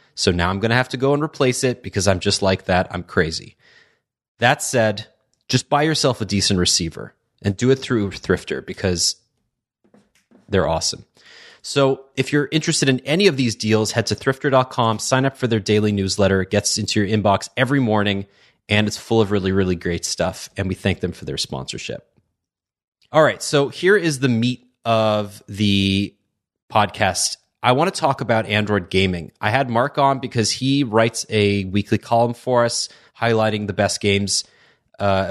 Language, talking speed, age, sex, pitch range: English, 185 wpm, 30-49, male, 100-130 Hz